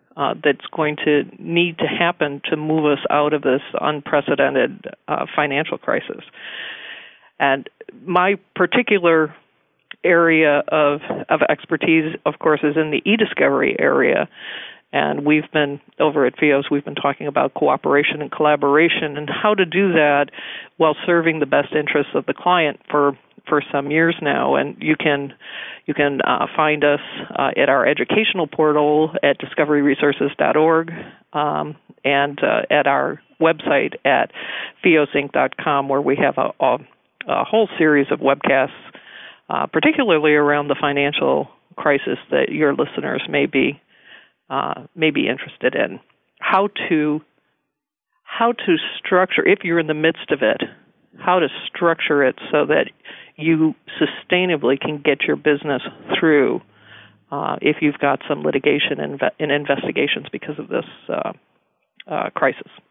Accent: American